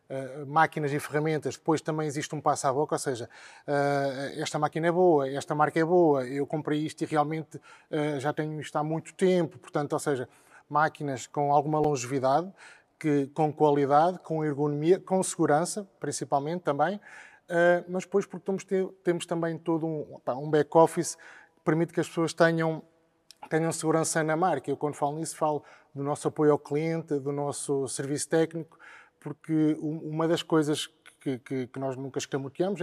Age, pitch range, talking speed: 20-39, 145-165 Hz, 175 wpm